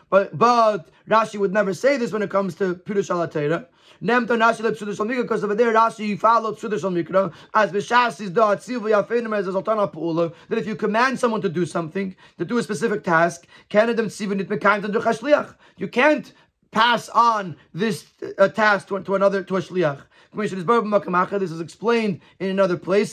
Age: 30-49